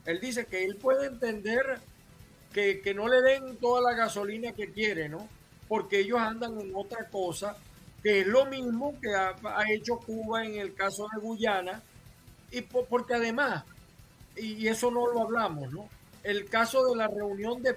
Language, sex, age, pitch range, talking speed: Spanish, male, 50-69, 195-240 Hz, 175 wpm